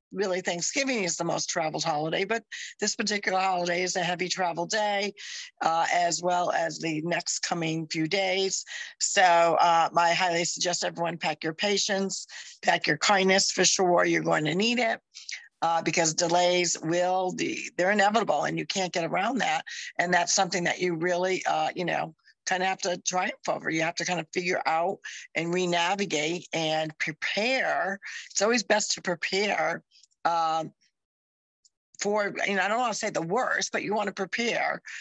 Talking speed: 180 wpm